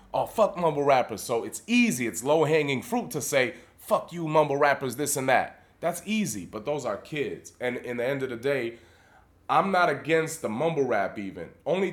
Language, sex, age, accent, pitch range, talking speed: English, male, 30-49, American, 120-160 Hz, 200 wpm